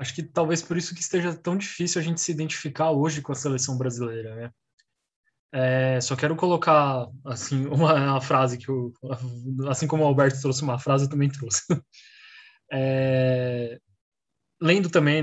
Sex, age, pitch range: male, 20-39, 135-160 Hz